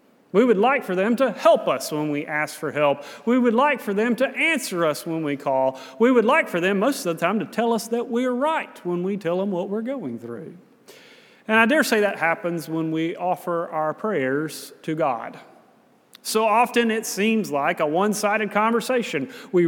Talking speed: 215 wpm